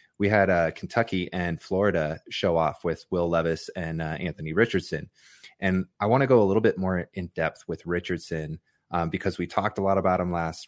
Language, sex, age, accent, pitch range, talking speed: English, male, 30-49, American, 85-100 Hz, 210 wpm